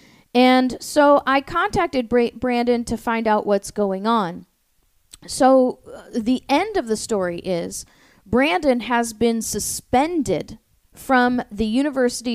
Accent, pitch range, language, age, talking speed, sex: American, 215-260 Hz, English, 40-59, 125 wpm, female